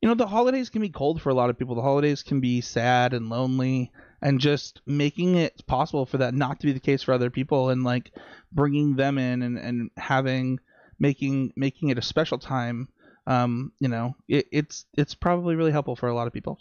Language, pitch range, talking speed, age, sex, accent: English, 125-150 Hz, 225 wpm, 20-39, male, American